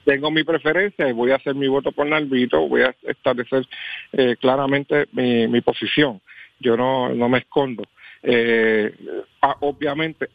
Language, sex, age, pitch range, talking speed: Spanish, male, 50-69, 125-145 Hz, 150 wpm